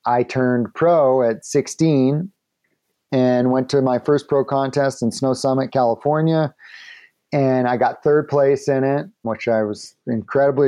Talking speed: 150 wpm